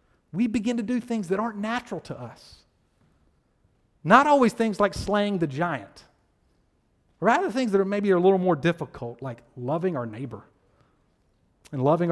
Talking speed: 165 wpm